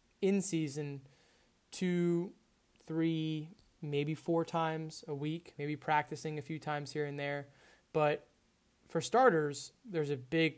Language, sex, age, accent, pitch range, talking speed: English, male, 20-39, American, 140-160 Hz, 130 wpm